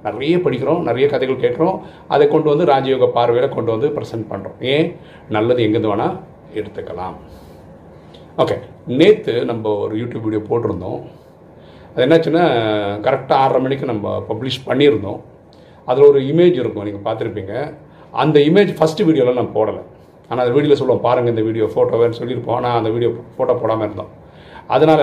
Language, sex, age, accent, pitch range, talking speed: Tamil, male, 40-59, native, 110-160 Hz, 150 wpm